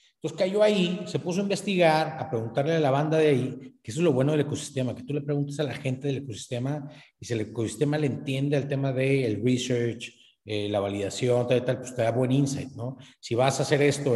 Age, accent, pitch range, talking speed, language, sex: 40-59, Mexican, 130-165 Hz, 245 wpm, Spanish, male